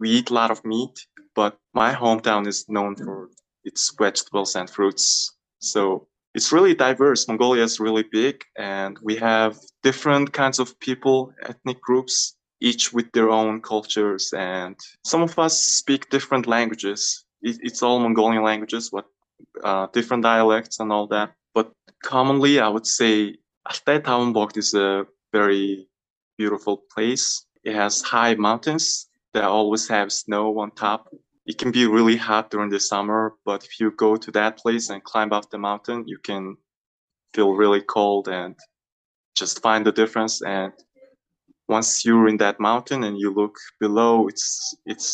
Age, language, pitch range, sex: 20-39, Portuguese, 105-120 Hz, male